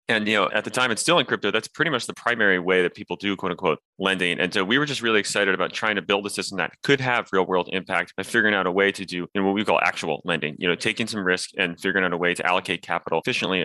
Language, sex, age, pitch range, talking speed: English, male, 30-49, 90-105 Hz, 295 wpm